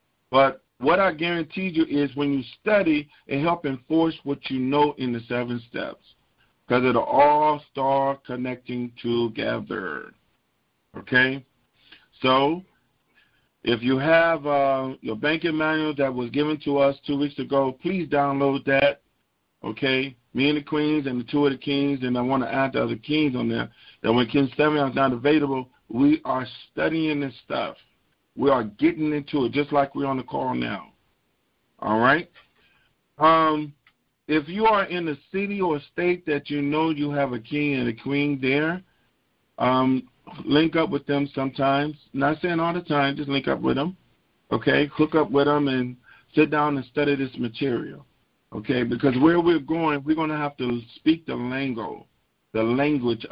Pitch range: 130-155 Hz